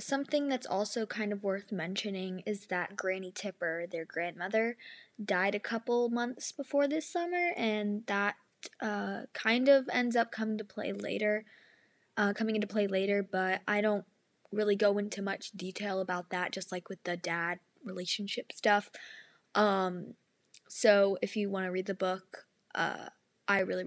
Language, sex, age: English, female, 20-39